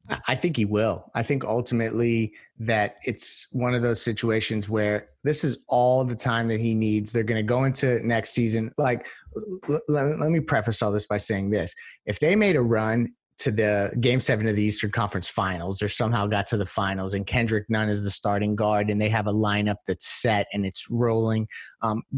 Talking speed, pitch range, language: 205 wpm, 110-130 Hz, English